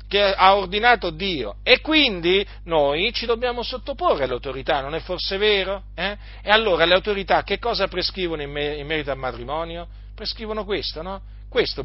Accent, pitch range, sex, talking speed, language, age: native, 115-195 Hz, male, 160 wpm, Italian, 40-59